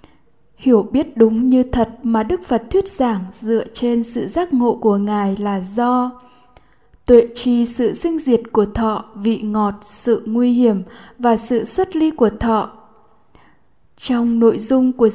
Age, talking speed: 10-29, 160 wpm